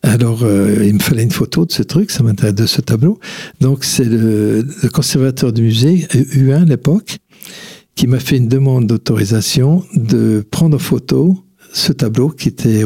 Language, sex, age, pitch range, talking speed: French, male, 60-79, 115-155 Hz, 180 wpm